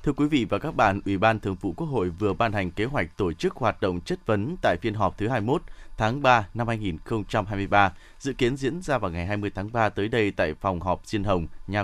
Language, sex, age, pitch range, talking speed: Vietnamese, male, 20-39, 100-145 Hz, 250 wpm